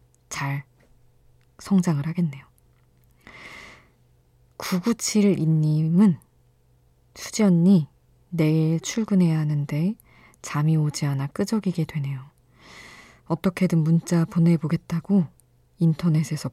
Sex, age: female, 20-39